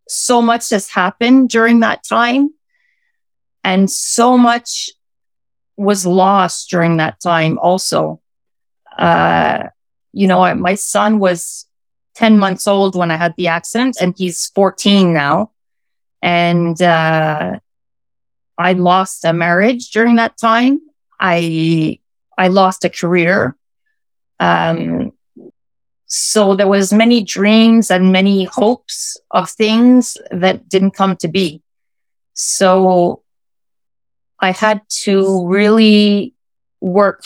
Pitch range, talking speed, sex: 175-225 Hz, 115 wpm, female